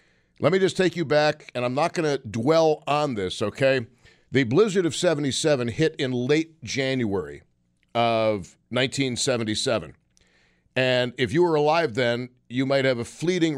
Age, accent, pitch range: 50-69, American, 120-155 Hz